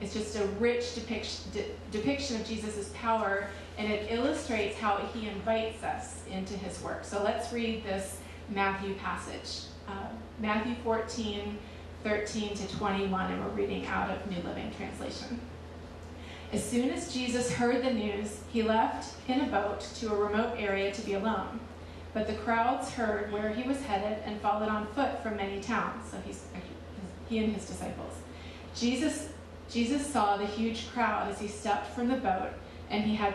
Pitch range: 195-230 Hz